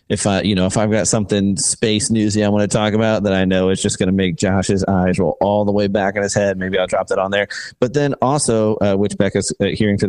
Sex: male